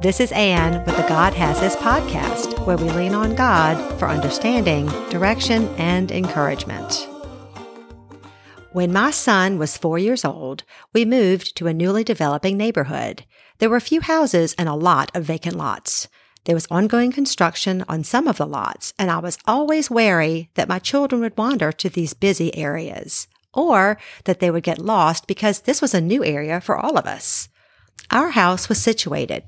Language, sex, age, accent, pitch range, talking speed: English, female, 50-69, American, 165-225 Hz, 175 wpm